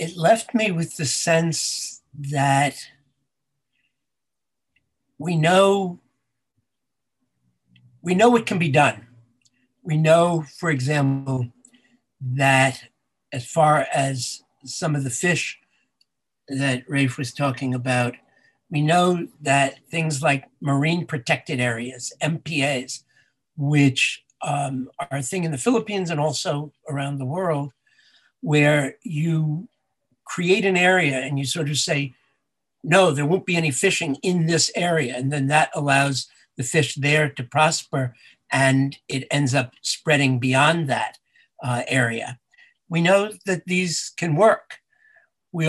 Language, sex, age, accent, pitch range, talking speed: English, male, 60-79, American, 135-170 Hz, 130 wpm